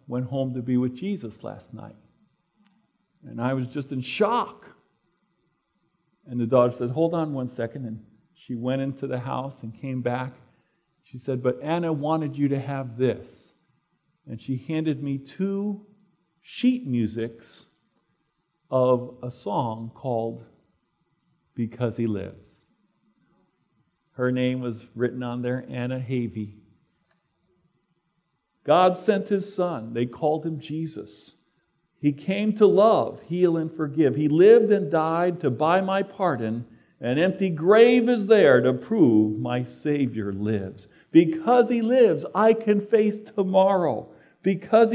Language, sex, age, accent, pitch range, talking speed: English, male, 50-69, American, 125-190 Hz, 140 wpm